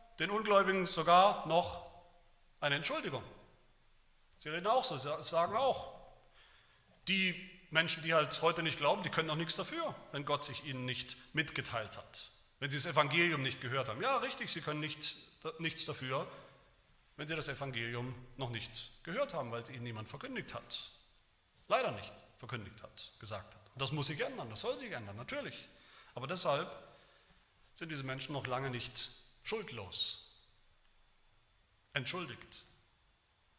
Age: 40-59